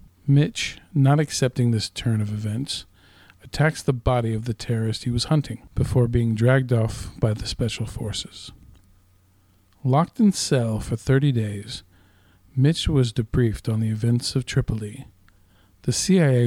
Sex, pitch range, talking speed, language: male, 105-135 Hz, 145 wpm, English